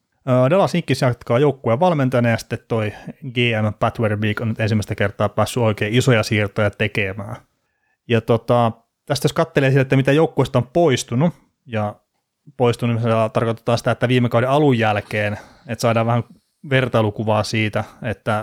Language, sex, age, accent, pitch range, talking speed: Finnish, male, 30-49, native, 110-125 Hz, 155 wpm